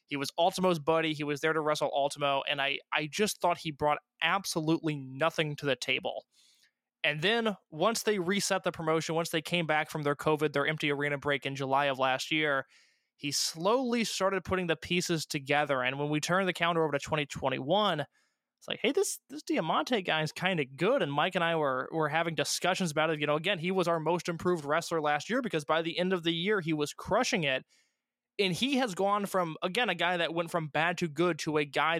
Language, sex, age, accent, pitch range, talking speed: English, male, 20-39, American, 150-185 Hz, 225 wpm